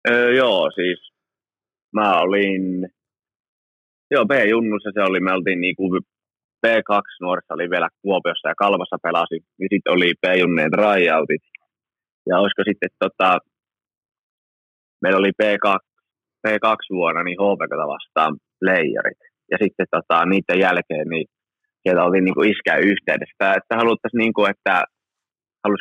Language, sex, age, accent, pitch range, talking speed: Finnish, male, 20-39, native, 90-105 Hz, 125 wpm